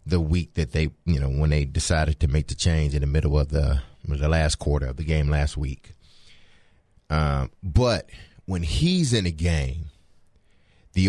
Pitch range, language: 85-120 Hz, English